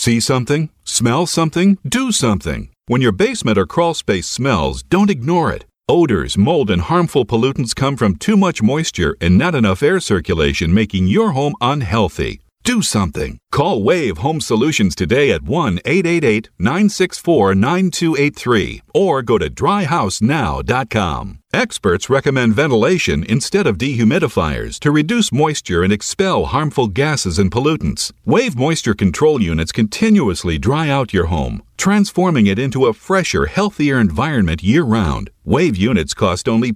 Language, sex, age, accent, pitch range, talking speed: English, male, 50-69, American, 110-180 Hz, 135 wpm